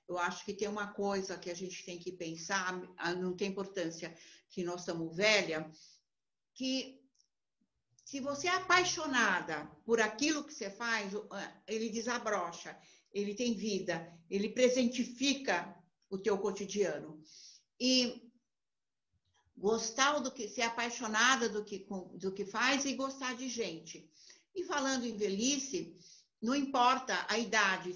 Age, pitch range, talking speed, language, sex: 60-79, 195-245 Hz, 135 wpm, Portuguese, female